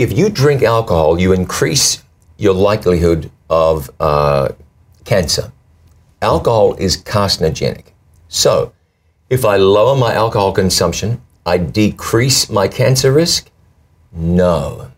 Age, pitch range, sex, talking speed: 50-69, 85-115 Hz, male, 110 wpm